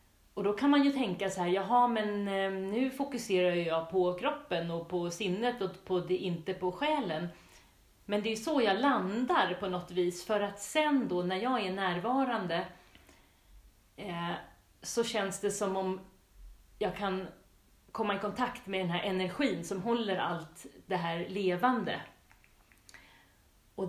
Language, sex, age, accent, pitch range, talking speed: Swedish, female, 40-59, native, 175-215 Hz, 160 wpm